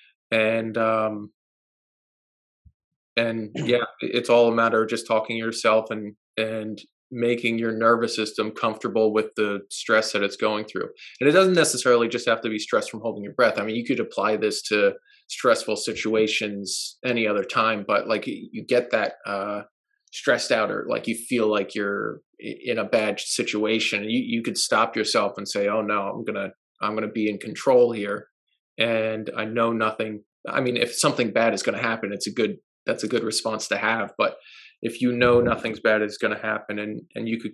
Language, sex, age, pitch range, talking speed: English, male, 20-39, 105-115 Hz, 200 wpm